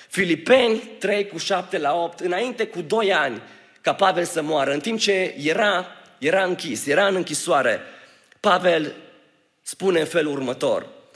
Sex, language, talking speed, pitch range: male, Romanian, 150 wpm, 180-225 Hz